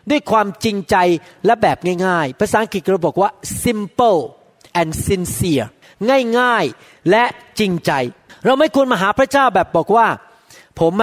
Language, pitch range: Thai, 190-255 Hz